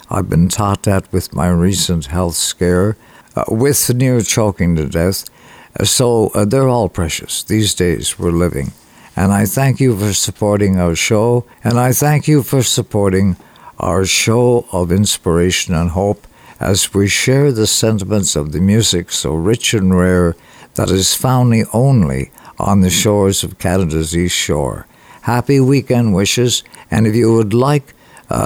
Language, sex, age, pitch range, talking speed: English, male, 60-79, 95-120 Hz, 160 wpm